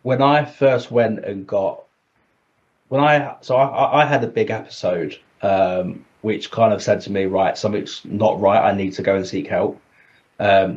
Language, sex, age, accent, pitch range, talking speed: English, male, 20-39, British, 100-135 Hz, 190 wpm